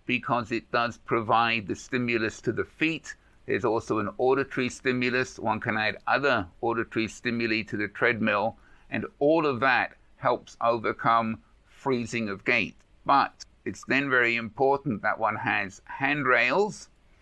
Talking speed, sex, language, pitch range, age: 145 wpm, male, English, 110-125 Hz, 50-69